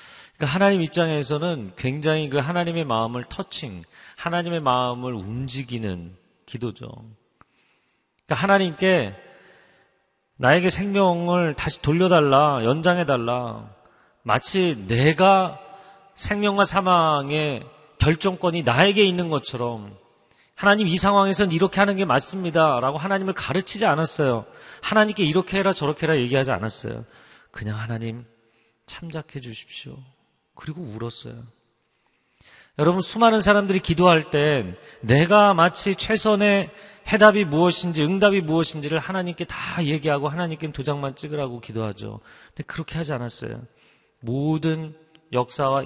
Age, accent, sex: 40-59, native, male